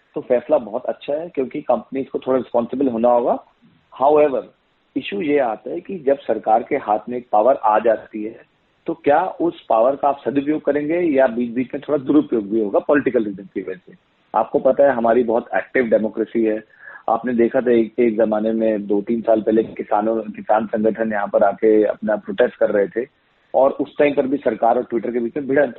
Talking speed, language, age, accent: 210 wpm, Hindi, 40-59, native